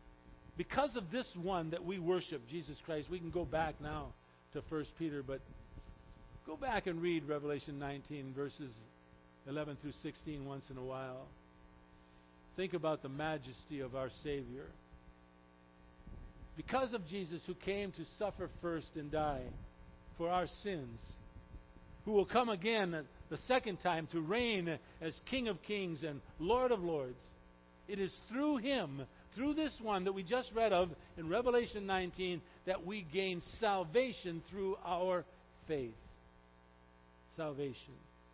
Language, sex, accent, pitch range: English, male, American, 125-195 Hz